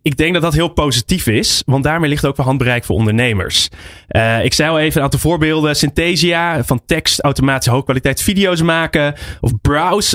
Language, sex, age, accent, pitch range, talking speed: Dutch, male, 20-39, Dutch, 120-160 Hz, 190 wpm